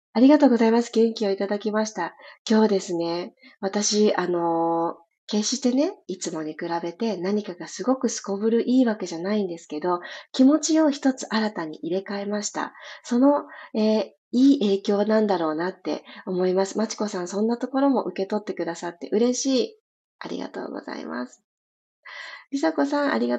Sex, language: female, Japanese